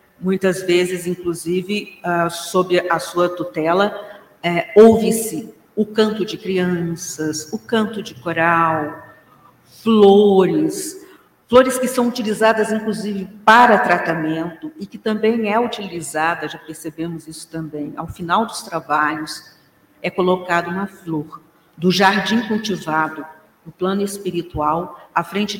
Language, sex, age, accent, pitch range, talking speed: Portuguese, female, 50-69, Brazilian, 170-220 Hz, 115 wpm